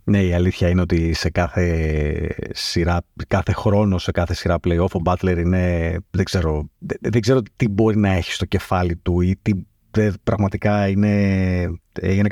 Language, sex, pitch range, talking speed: Greek, male, 90-120 Hz, 170 wpm